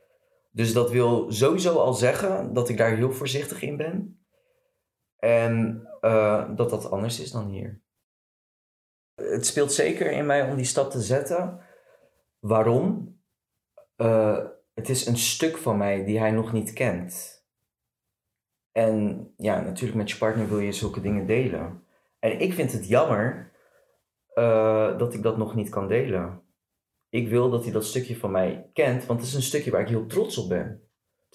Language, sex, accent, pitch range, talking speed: Dutch, male, Dutch, 105-130 Hz, 170 wpm